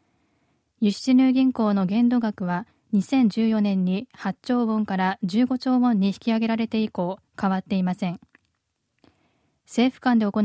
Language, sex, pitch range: Japanese, female, 195-245 Hz